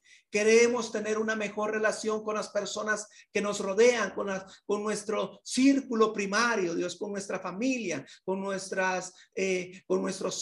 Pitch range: 185-225 Hz